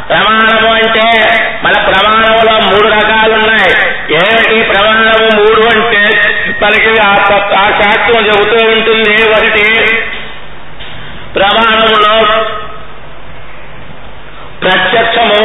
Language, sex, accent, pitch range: Telugu, male, native, 210-230 Hz